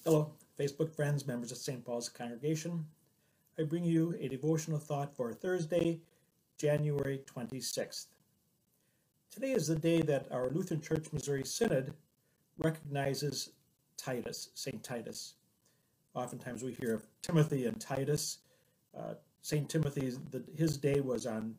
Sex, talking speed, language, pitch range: male, 130 wpm, English, 130-160 Hz